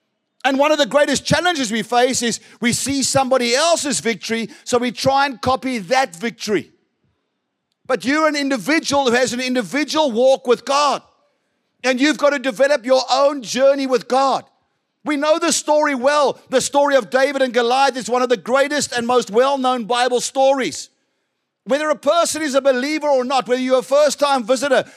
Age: 50-69